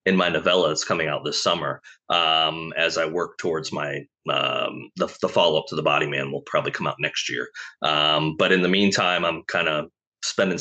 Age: 30-49